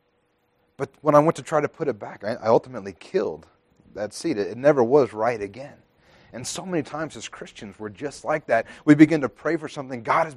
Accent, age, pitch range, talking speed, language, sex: American, 30-49, 105-150 Hz, 220 wpm, English, male